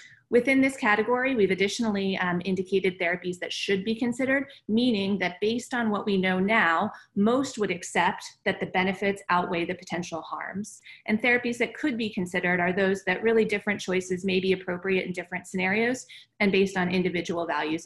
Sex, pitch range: female, 180-210 Hz